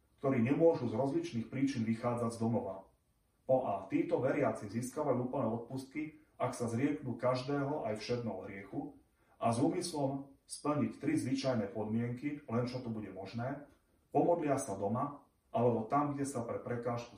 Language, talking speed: Slovak, 150 wpm